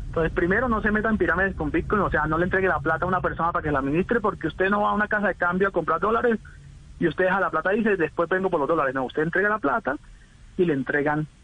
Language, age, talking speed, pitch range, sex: Spanish, 30-49, 290 wpm, 145-185 Hz, male